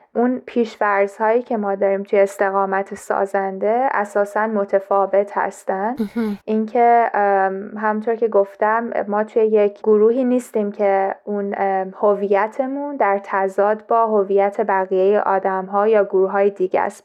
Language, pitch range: Persian, 200-230 Hz